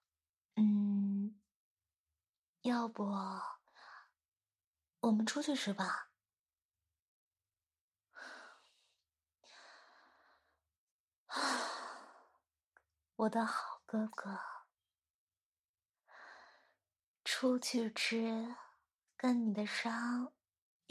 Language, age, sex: Chinese, 30-49, female